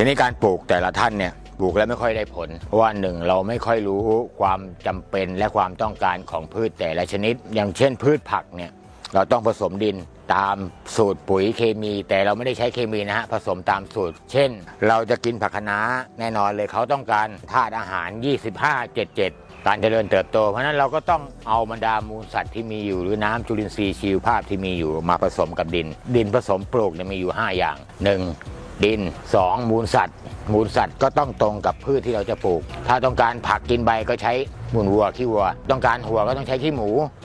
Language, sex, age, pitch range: Thai, male, 60-79, 95-115 Hz